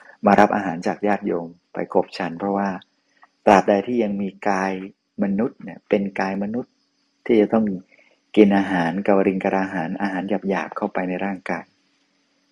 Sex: male